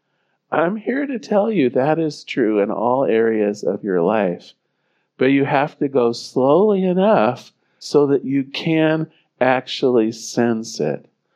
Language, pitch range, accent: English, 110-150 Hz, American